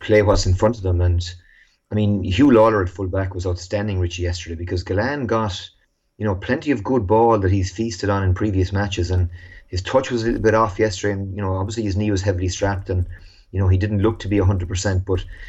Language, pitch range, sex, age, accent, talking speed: English, 90-105 Hz, male, 30-49, Irish, 240 wpm